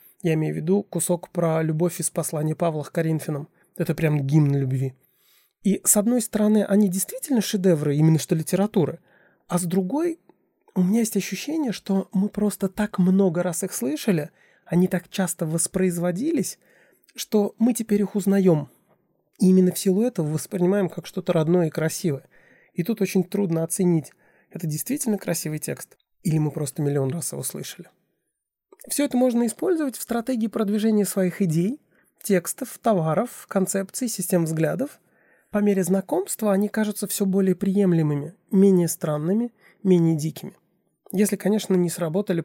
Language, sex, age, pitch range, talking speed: Russian, male, 20-39, 165-205 Hz, 150 wpm